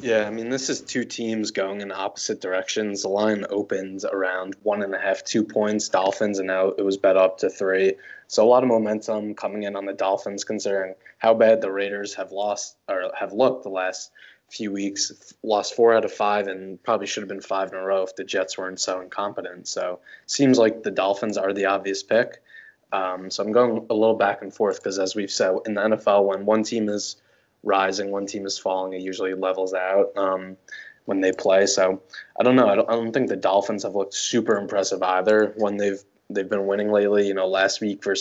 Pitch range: 95-105 Hz